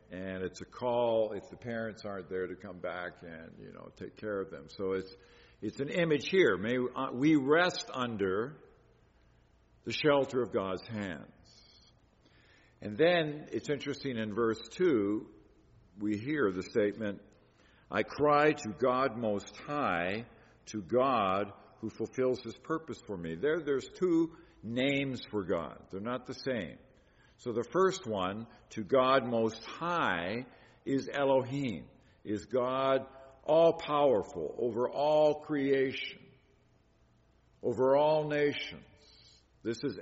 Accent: American